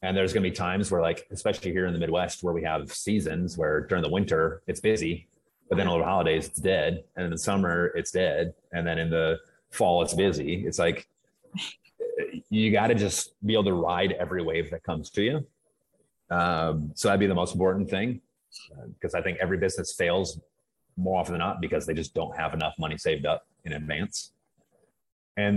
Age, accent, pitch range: 30-49, American, 85-105 Hz